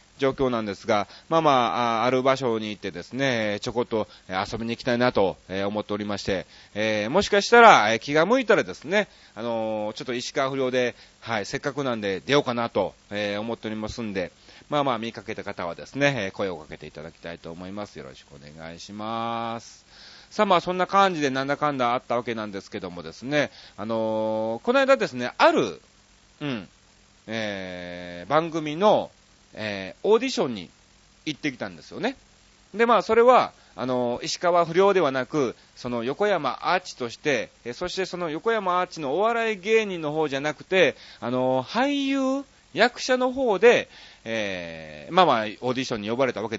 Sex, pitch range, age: male, 110-180 Hz, 30-49